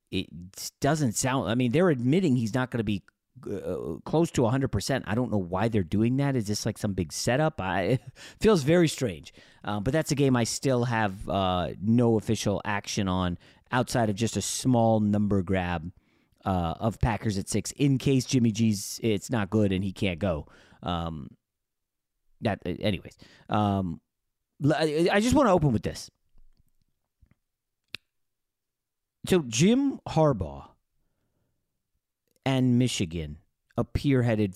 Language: English